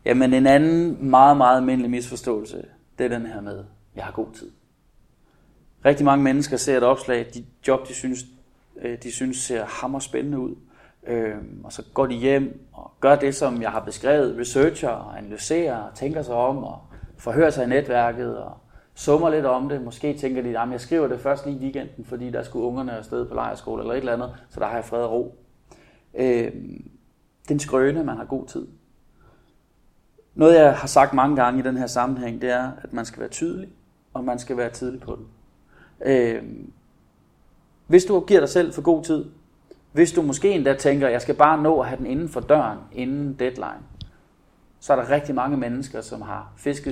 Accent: native